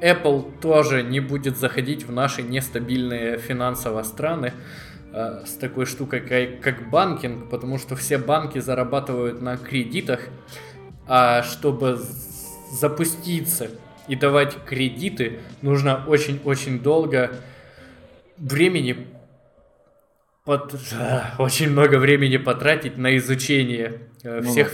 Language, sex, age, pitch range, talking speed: Russian, male, 20-39, 120-140 Hz, 95 wpm